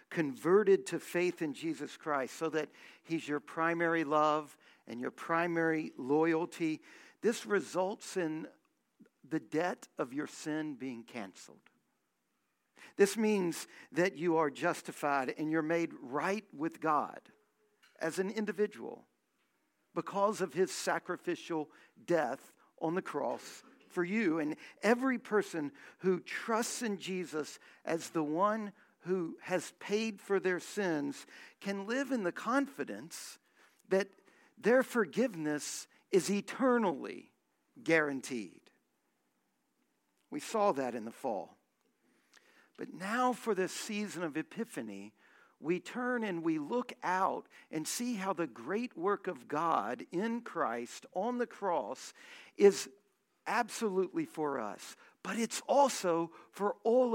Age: 50-69